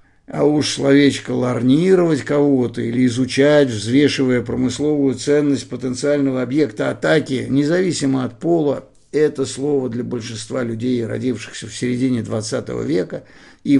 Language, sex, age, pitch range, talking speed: Russian, male, 50-69, 120-145 Hz, 115 wpm